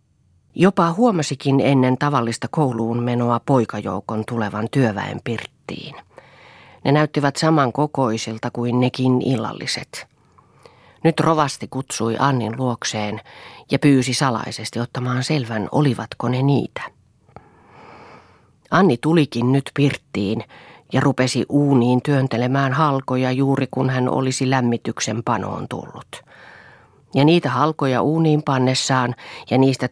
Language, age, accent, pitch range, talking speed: Finnish, 40-59, native, 120-145 Hz, 105 wpm